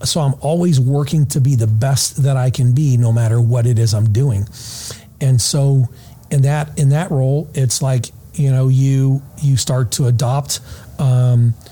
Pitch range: 130-165 Hz